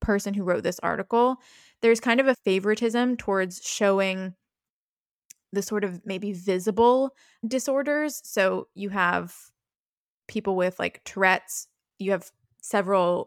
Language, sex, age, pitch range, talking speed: English, female, 10-29, 185-220 Hz, 125 wpm